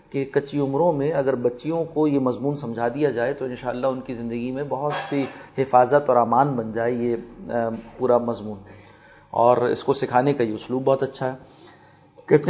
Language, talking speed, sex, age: Urdu, 185 wpm, male, 40-59